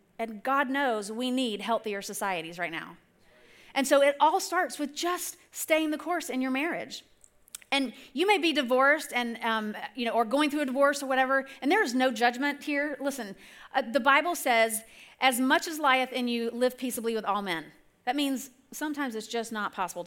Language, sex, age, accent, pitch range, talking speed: English, female, 40-59, American, 225-280 Hz, 200 wpm